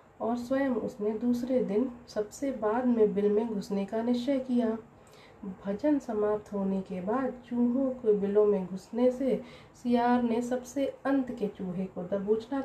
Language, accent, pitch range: Hindi, native, 205-245 Hz